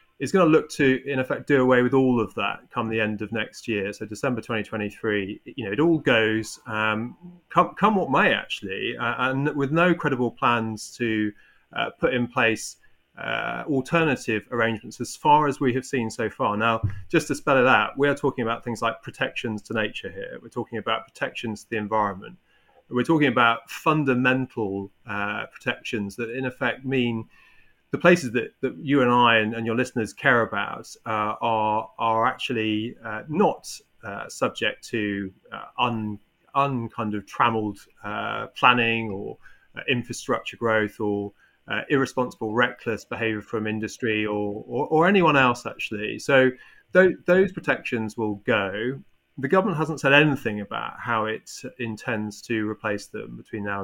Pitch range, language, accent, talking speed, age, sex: 110-130 Hz, English, British, 170 wpm, 30-49, male